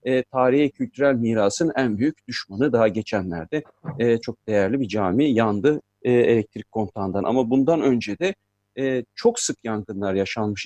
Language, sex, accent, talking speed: Turkish, male, native, 150 wpm